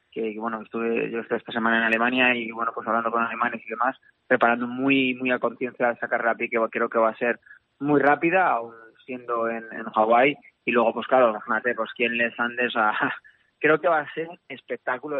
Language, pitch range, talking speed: Spanish, 115-130 Hz, 215 wpm